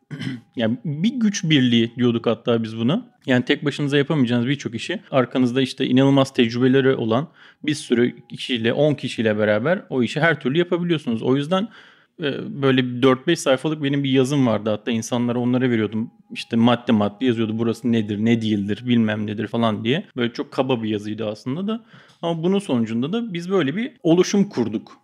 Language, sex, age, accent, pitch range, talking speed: Turkish, male, 40-59, native, 120-150 Hz, 170 wpm